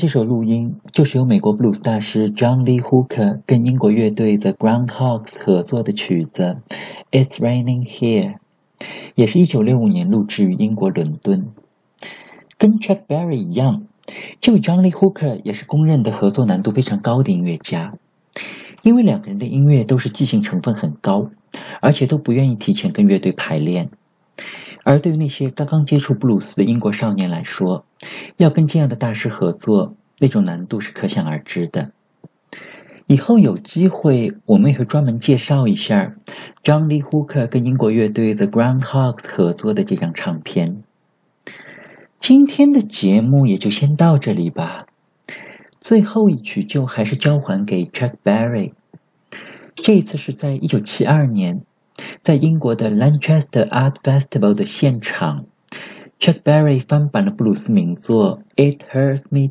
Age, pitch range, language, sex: 50-69, 120-190 Hz, Chinese, male